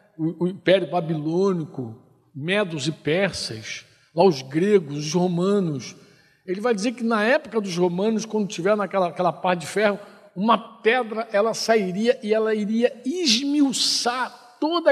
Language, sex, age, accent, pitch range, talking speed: Portuguese, male, 60-79, Brazilian, 185-240 Hz, 140 wpm